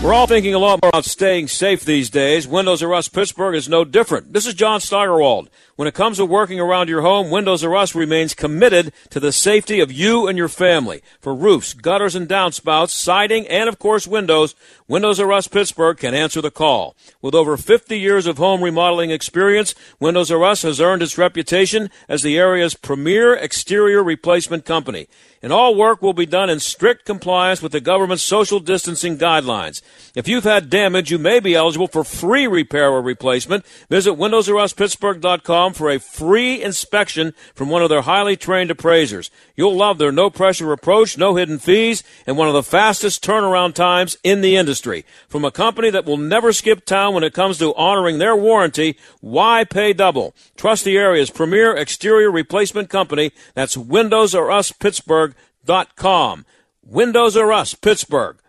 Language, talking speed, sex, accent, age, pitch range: English, 180 wpm, male, American, 50-69, 160-205 Hz